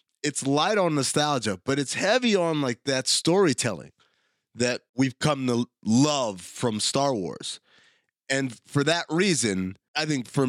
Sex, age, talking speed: male, 30-49, 150 wpm